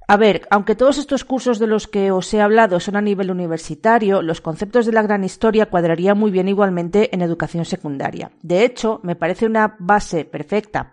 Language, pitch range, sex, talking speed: Spanish, 175-230 Hz, female, 200 wpm